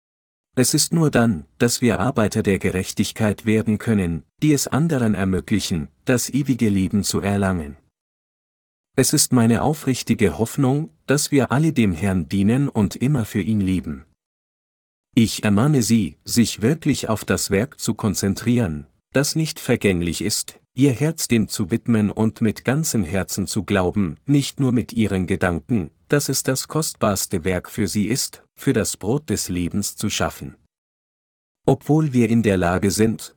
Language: German